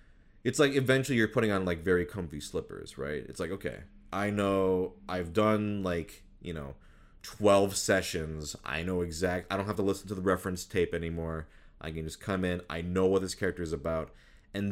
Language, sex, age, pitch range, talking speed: English, male, 30-49, 85-105 Hz, 200 wpm